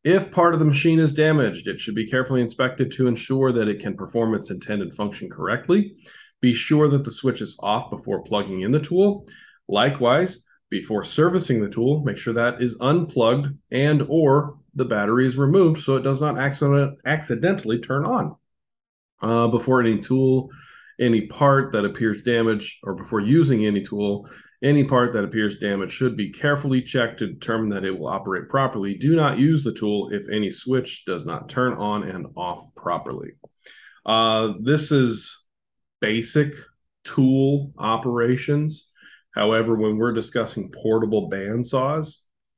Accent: American